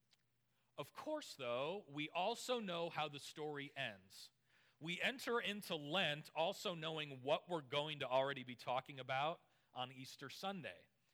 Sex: male